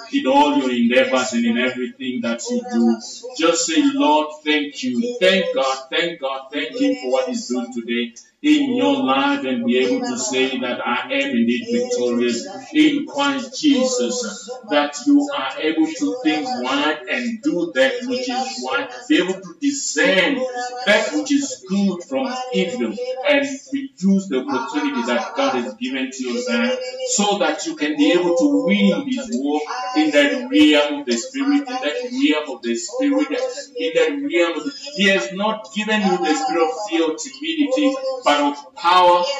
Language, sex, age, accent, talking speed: English, male, 50-69, Nigerian, 185 wpm